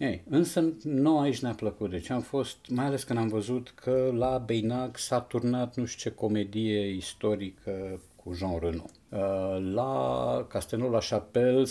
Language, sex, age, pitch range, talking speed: Romanian, male, 50-69, 90-120 Hz, 160 wpm